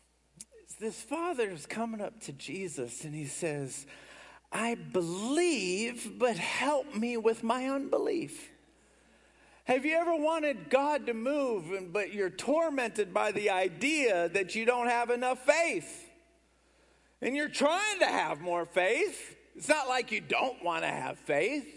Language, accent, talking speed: English, American, 145 wpm